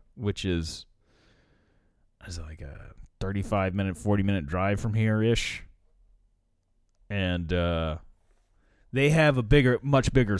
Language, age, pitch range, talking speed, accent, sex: English, 30-49, 90-115 Hz, 115 wpm, American, male